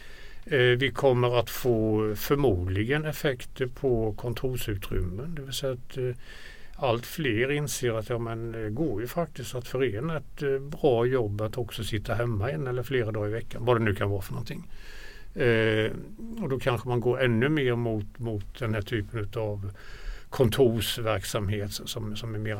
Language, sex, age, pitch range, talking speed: Swedish, male, 60-79, 105-130 Hz, 160 wpm